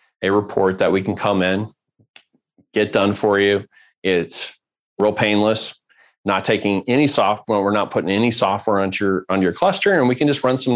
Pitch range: 95-115 Hz